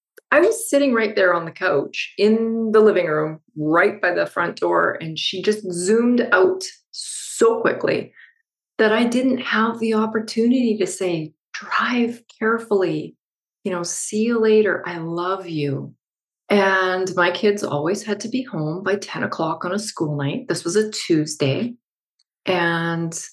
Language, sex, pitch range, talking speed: English, female, 165-215 Hz, 160 wpm